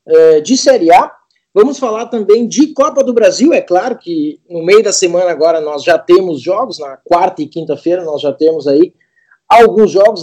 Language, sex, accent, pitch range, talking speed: Portuguese, male, Brazilian, 175-250 Hz, 190 wpm